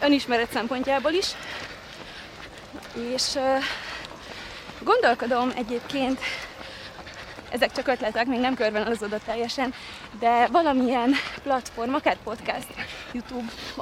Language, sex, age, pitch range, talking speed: Hungarian, female, 20-39, 240-285 Hz, 100 wpm